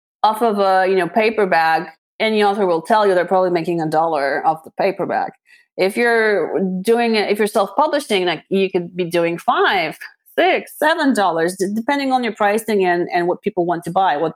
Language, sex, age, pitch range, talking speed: English, female, 30-49, 175-230 Hz, 195 wpm